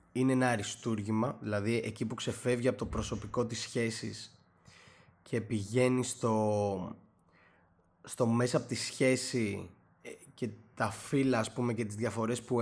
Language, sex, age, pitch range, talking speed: Greek, male, 20-39, 110-125 Hz, 135 wpm